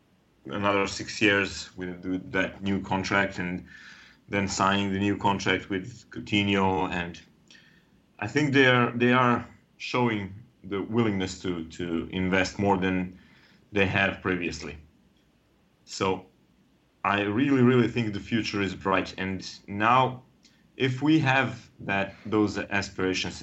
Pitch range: 95-110 Hz